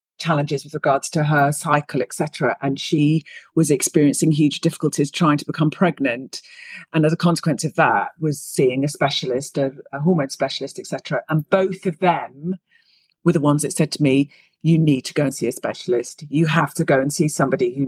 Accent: British